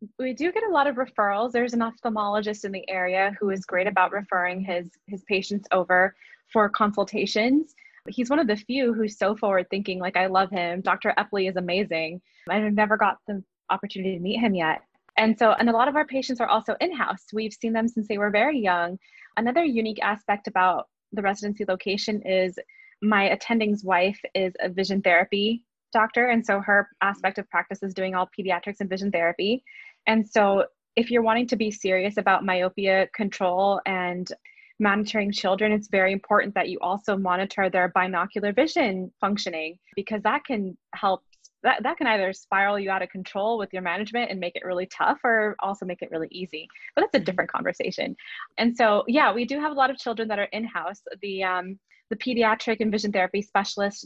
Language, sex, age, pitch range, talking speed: English, female, 20-39, 190-225 Hz, 195 wpm